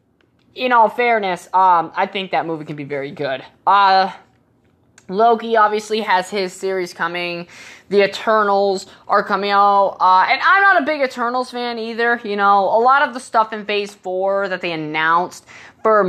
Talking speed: 175 wpm